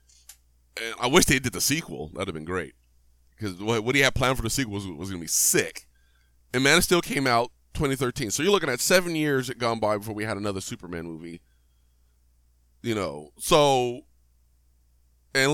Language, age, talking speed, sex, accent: English, 20-39, 190 wpm, male, American